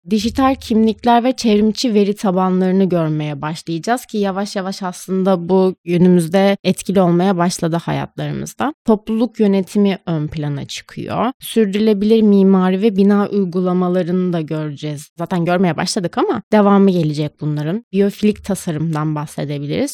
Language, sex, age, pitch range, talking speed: Turkish, female, 30-49, 175-220 Hz, 120 wpm